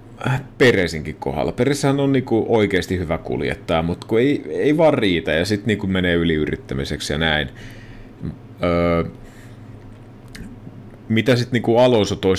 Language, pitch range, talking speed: Finnish, 85-115 Hz, 125 wpm